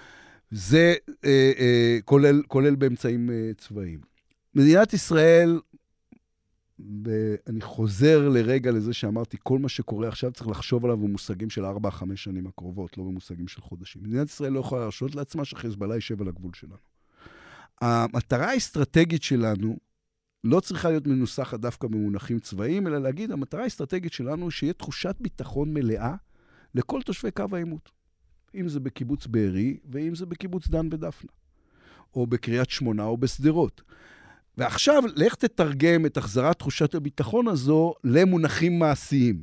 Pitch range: 110-145 Hz